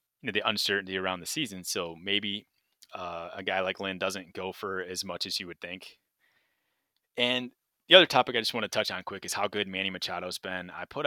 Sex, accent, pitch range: male, American, 90-105 Hz